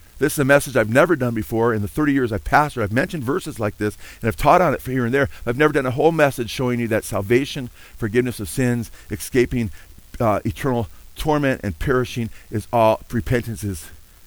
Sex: male